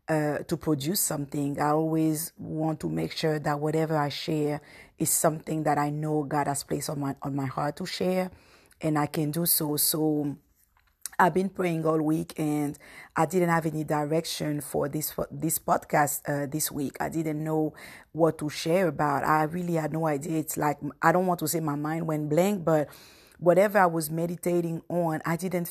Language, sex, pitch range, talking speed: English, female, 150-170 Hz, 195 wpm